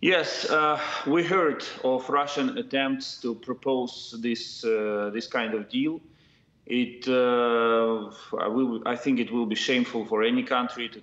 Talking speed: 160 wpm